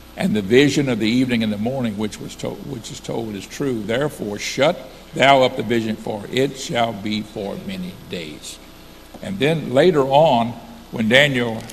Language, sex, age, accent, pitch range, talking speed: English, male, 60-79, American, 105-125 Hz, 185 wpm